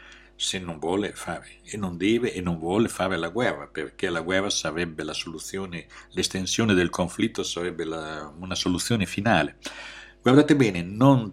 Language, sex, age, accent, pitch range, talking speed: Italian, male, 60-79, native, 85-115 Hz, 155 wpm